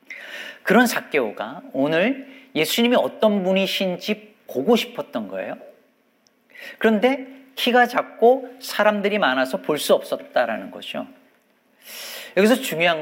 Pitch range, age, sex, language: 150-245 Hz, 40-59, male, Korean